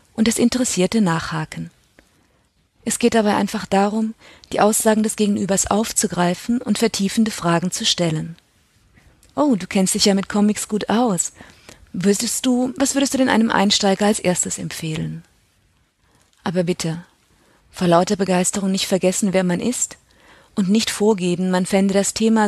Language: German